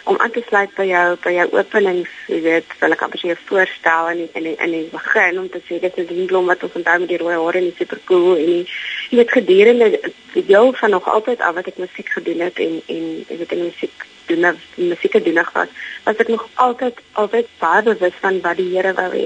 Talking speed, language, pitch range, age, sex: 225 wpm, English, 175-260 Hz, 20-39, female